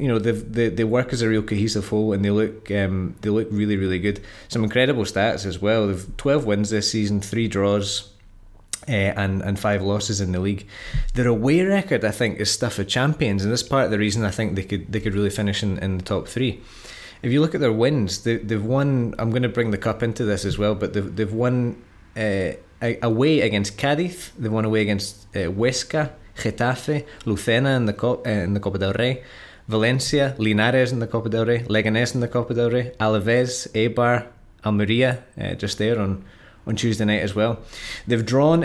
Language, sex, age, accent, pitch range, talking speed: English, male, 20-39, British, 100-120 Hz, 215 wpm